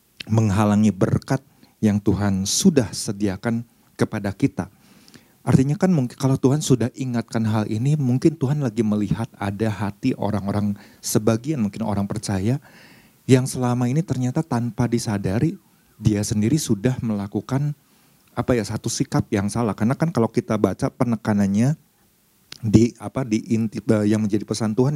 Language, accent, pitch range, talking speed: Indonesian, native, 105-130 Hz, 140 wpm